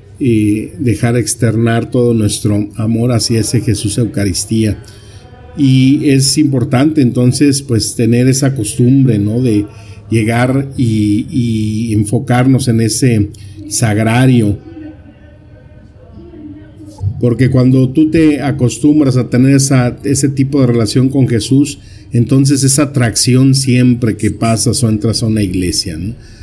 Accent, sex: Mexican, male